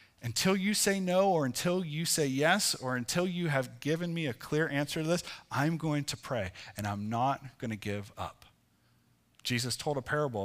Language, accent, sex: English, American, male